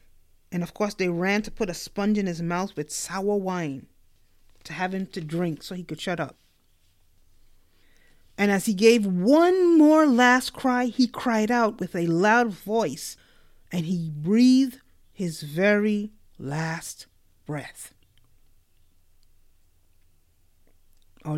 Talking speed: 135 wpm